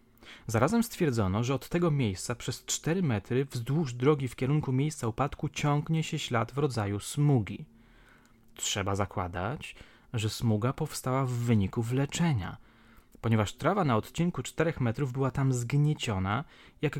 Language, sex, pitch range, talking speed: Polish, male, 115-145 Hz, 140 wpm